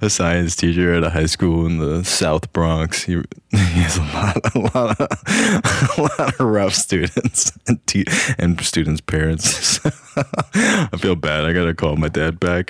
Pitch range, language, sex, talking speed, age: 80-100 Hz, English, male, 165 wpm, 20-39